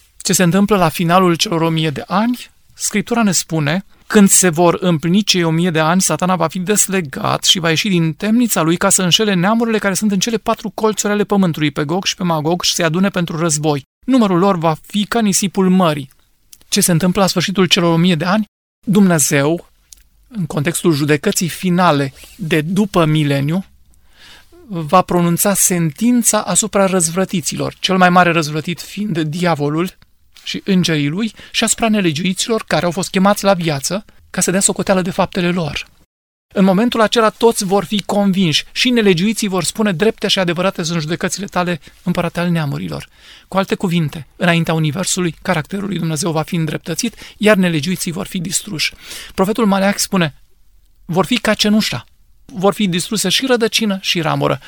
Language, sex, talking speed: Romanian, male, 175 wpm